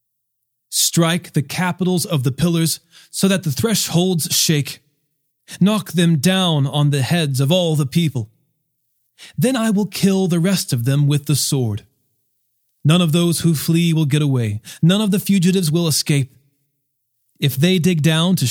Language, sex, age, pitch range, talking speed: English, male, 30-49, 125-175 Hz, 165 wpm